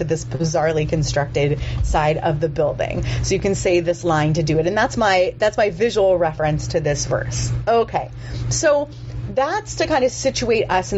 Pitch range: 130-205 Hz